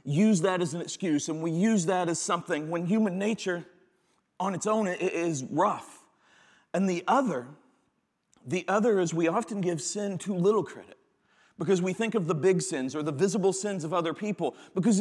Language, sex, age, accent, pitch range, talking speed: English, male, 40-59, American, 180-215 Hz, 190 wpm